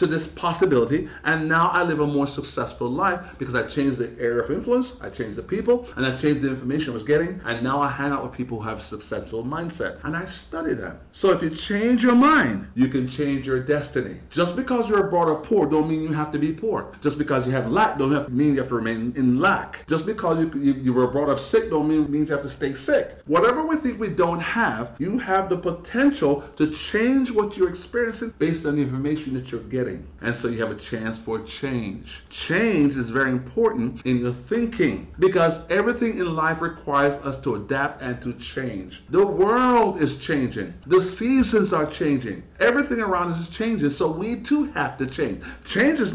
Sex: male